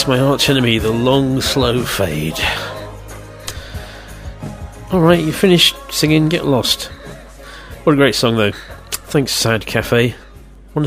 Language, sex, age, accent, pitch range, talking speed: English, male, 40-59, British, 110-160 Hz, 120 wpm